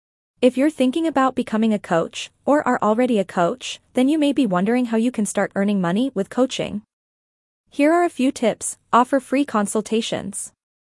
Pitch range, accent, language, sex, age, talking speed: 205-255 Hz, American, English, female, 20-39, 180 wpm